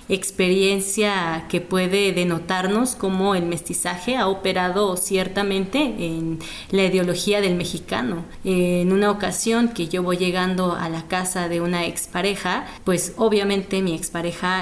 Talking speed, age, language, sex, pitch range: 130 wpm, 20-39, Spanish, female, 175-200 Hz